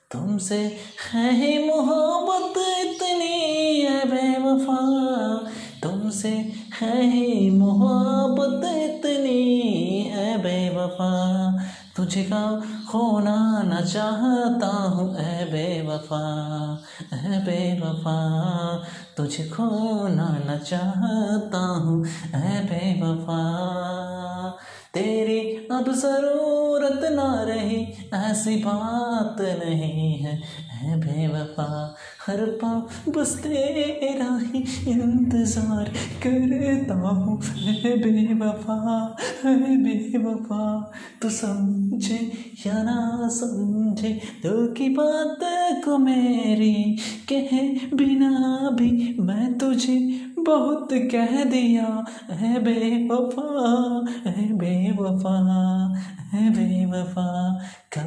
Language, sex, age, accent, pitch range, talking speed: Hindi, male, 30-49, native, 185-250 Hz, 80 wpm